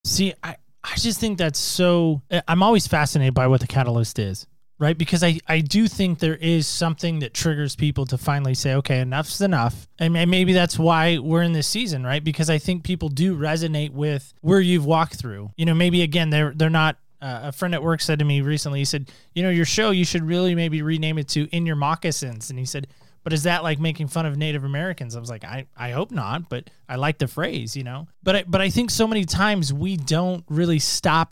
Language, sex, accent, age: English, male, American, 20-39